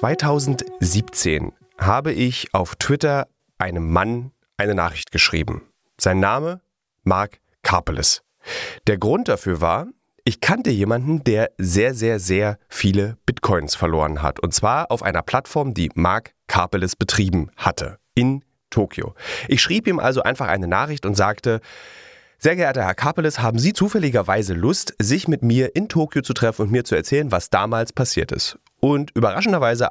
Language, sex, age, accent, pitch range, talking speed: German, male, 30-49, German, 100-145 Hz, 150 wpm